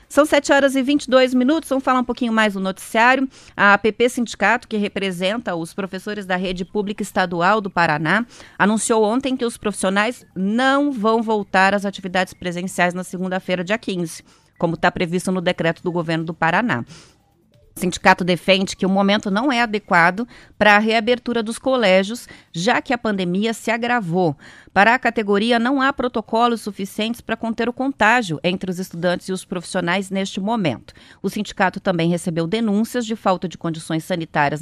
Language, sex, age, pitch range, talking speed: Portuguese, female, 30-49, 185-235 Hz, 170 wpm